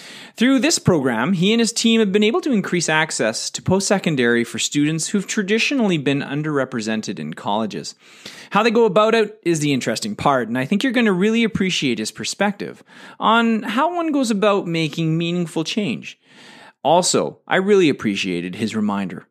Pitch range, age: 135-220 Hz, 30-49